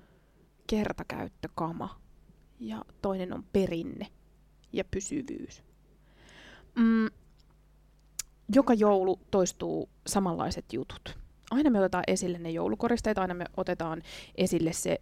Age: 20-39